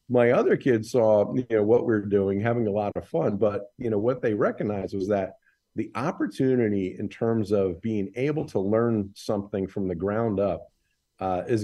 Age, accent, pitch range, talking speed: 50-69, American, 100-130 Hz, 195 wpm